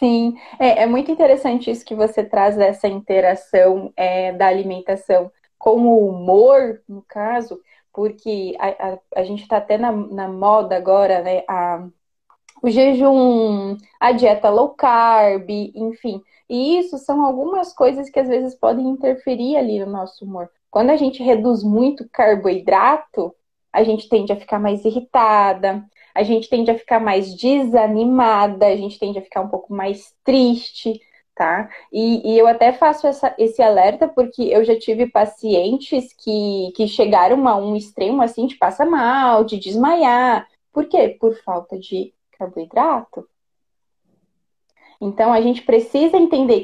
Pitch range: 200-250 Hz